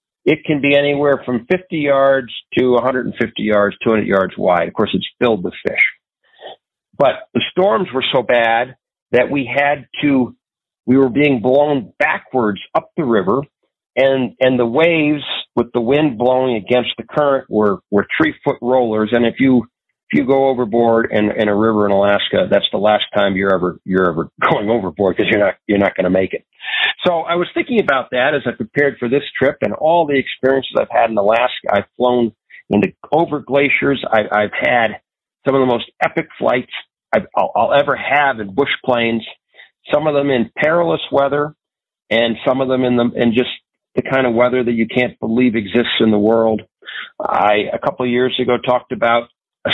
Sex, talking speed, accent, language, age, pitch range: male, 195 wpm, American, English, 50-69, 110-140 Hz